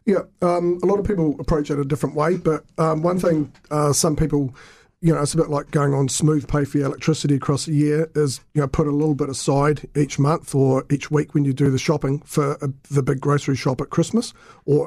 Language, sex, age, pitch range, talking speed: English, male, 40-59, 140-155 Hz, 245 wpm